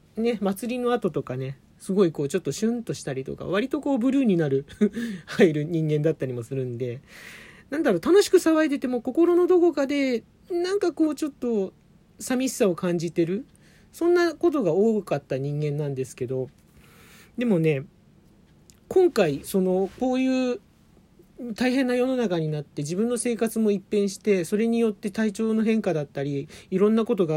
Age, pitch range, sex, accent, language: 40-59, 155-235 Hz, male, native, Japanese